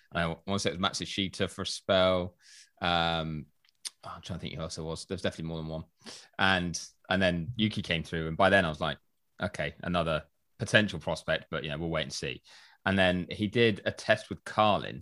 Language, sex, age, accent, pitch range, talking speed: English, male, 20-39, British, 80-95 Hz, 220 wpm